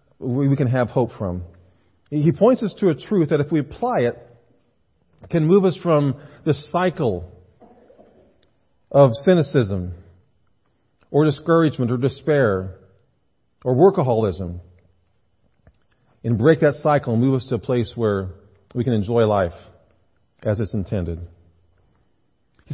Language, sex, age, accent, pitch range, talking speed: English, male, 40-59, American, 105-155 Hz, 130 wpm